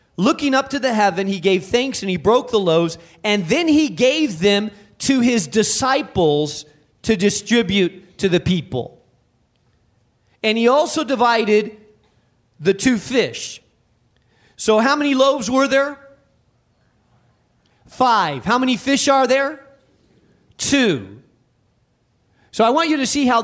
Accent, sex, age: American, male, 40-59